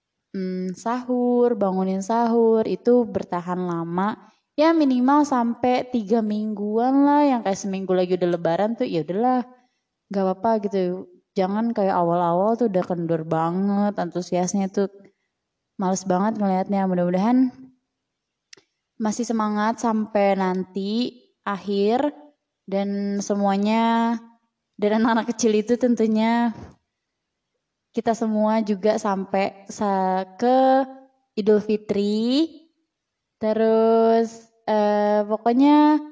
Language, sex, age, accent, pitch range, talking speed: Indonesian, female, 20-39, native, 190-240 Hz, 100 wpm